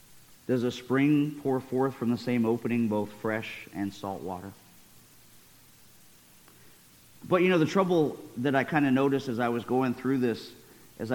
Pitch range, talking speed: 115-145 Hz, 165 wpm